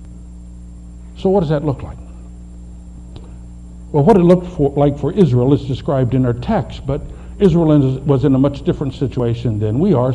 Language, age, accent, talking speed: English, 60-79, American, 170 wpm